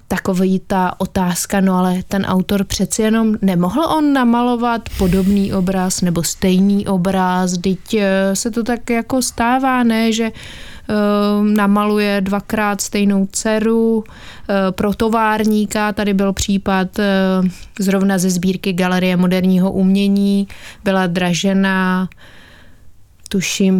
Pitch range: 185-210 Hz